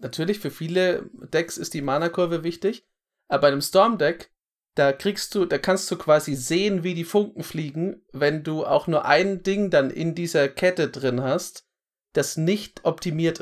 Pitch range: 140-185 Hz